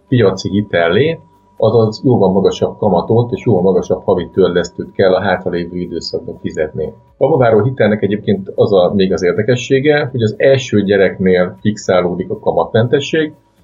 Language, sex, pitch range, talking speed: Hungarian, male, 95-125 Hz, 140 wpm